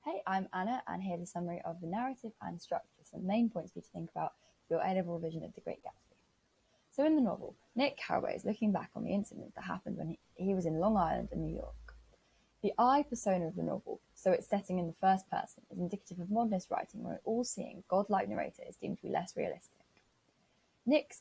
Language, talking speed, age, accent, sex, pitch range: English, 230 wpm, 10-29, British, female, 180-235 Hz